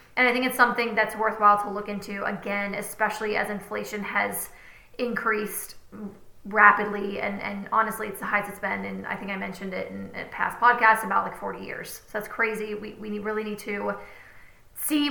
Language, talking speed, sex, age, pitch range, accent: English, 190 wpm, female, 20-39, 210-245 Hz, American